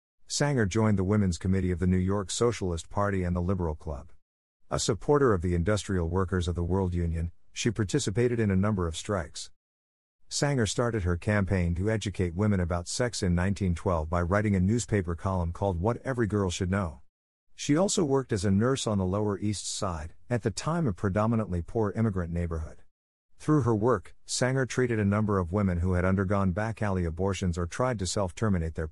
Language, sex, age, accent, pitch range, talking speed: English, male, 50-69, American, 90-110 Hz, 190 wpm